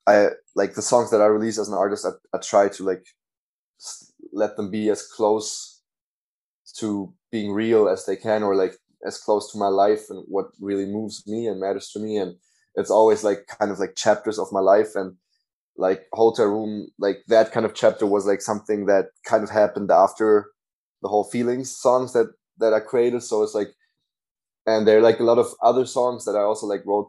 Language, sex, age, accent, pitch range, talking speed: English, male, 20-39, German, 100-125 Hz, 210 wpm